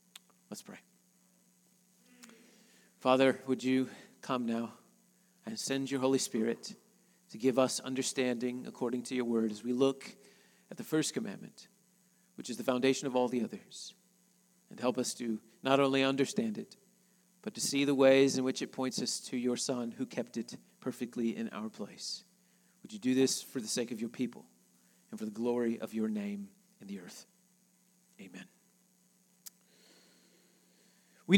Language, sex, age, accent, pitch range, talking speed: English, male, 40-59, American, 135-195 Hz, 165 wpm